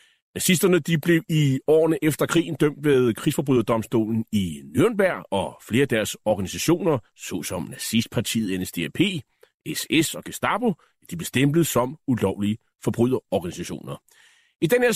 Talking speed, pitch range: 130 wpm, 125-170 Hz